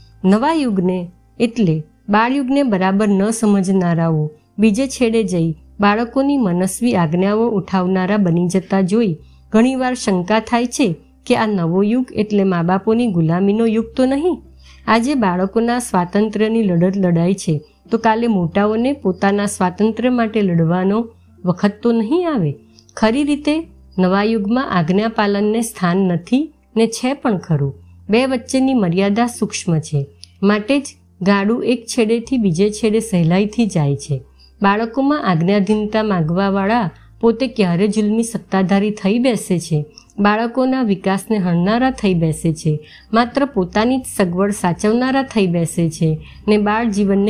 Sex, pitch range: female, 180-230 Hz